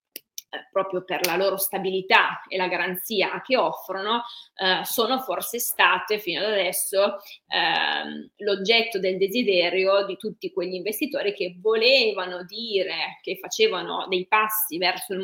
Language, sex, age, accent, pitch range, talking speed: Italian, female, 20-39, native, 185-225 Hz, 135 wpm